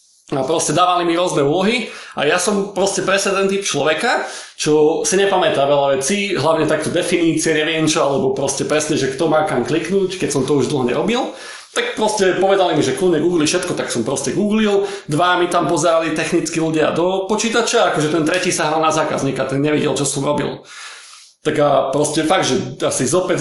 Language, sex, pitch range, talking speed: Slovak, male, 150-190 Hz, 195 wpm